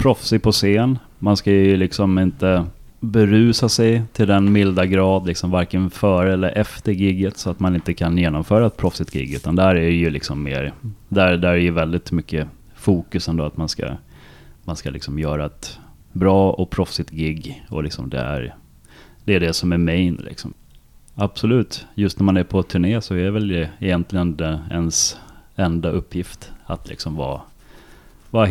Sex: male